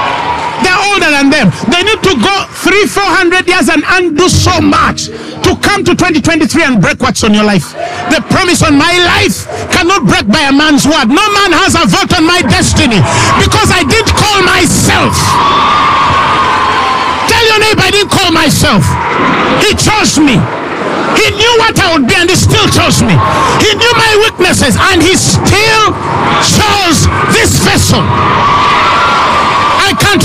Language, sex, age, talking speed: English, male, 50-69, 160 wpm